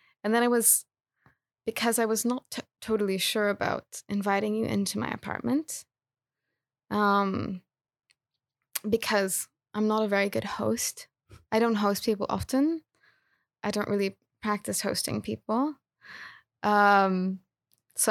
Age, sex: 20-39, female